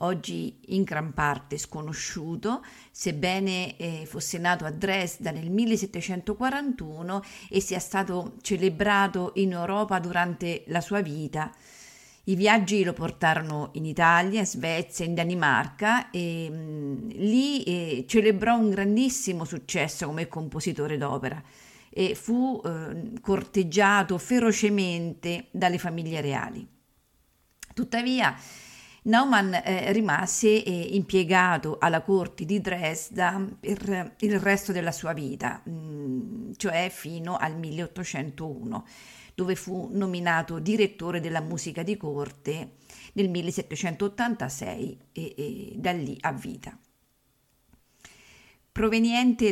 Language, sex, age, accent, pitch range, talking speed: Italian, female, 50-69, native, 165-205 Hz, 105 wpm